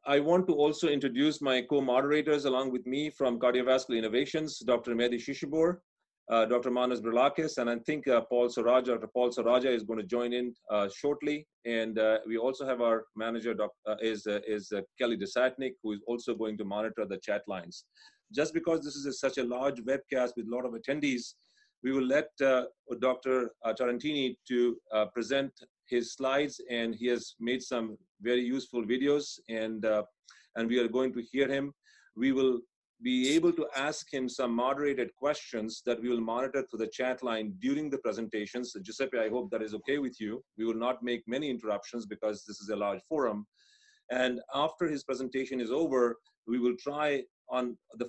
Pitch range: 115-140 Hz